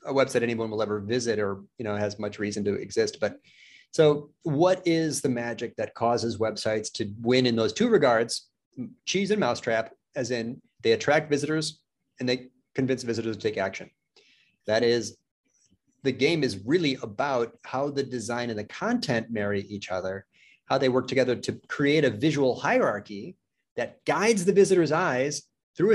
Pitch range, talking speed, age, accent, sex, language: 120-170 Hz, 175 wpm, 30-49, American, male, English